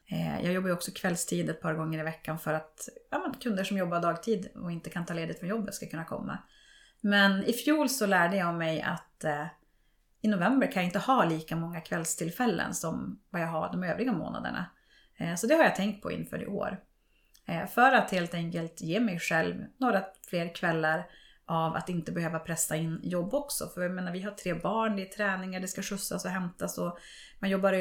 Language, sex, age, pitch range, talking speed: Swedish, female, 30-49, 170-210 Hz, 210 wpm